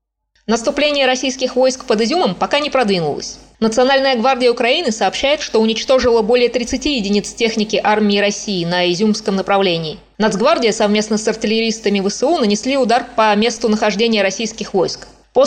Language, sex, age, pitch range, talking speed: Russian, female, 20-39, 200-245 Hz, 140 wpm